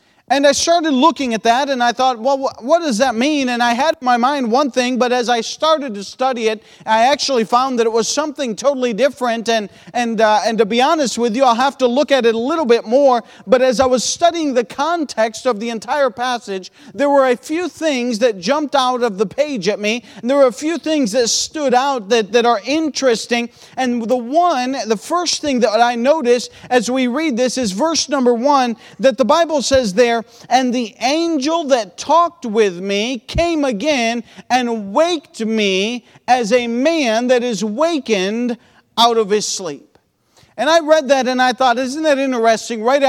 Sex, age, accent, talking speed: male, 40-59, American, 205 wpm